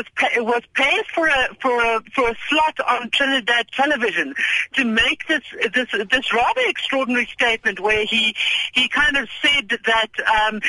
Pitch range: 210-255 Hz